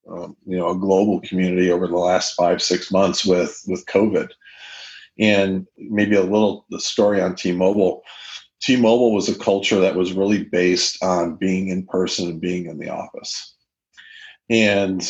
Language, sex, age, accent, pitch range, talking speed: English, male, 50-69, American, 90-100 Hz, 160 wpm